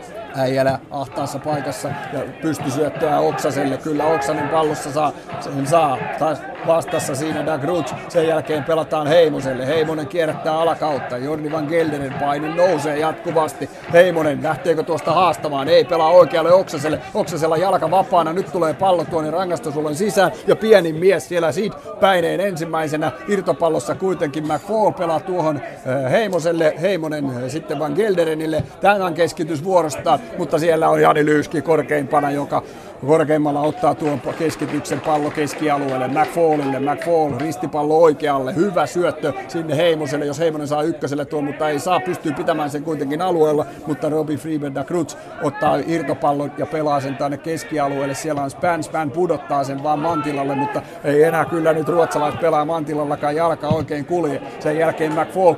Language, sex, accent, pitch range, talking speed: Finnish, male, native, 150-165 Hz, 145 wpm